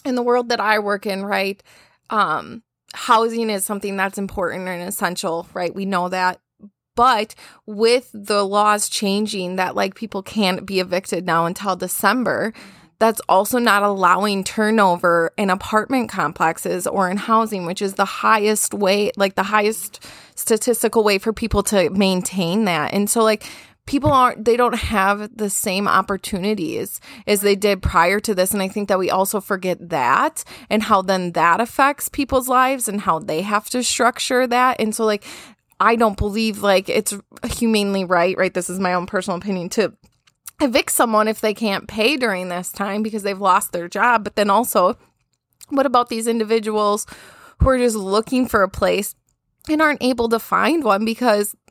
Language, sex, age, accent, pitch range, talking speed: English, female, 20-39, American, 190-225 Hz, 175 wpm